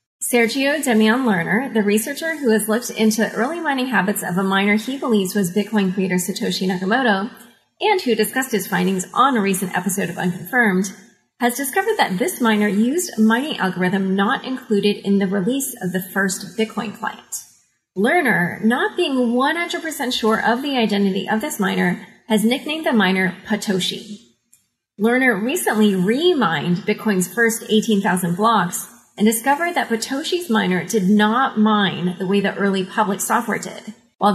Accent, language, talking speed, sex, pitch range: American, English, 165 wpm, female, 195-240 Hz